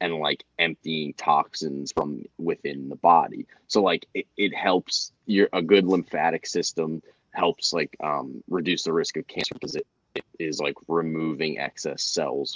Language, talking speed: English, 165 wpm